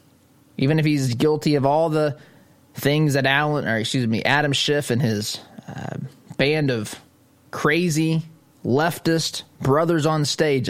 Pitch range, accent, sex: 125-150 Hz, American, male